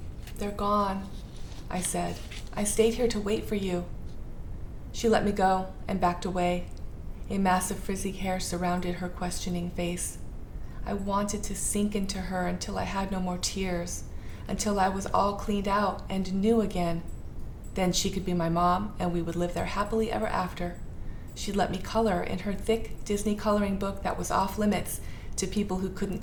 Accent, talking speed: American, 180 wpm